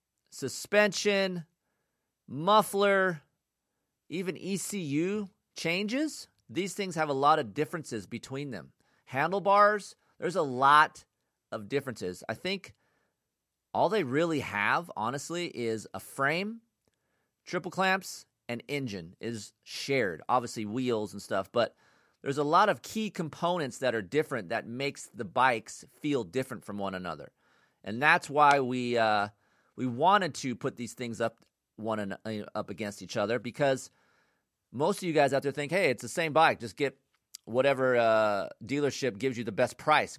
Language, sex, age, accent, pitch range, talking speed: English, male, 40-59, American, 120-180 Hz, 150 wpm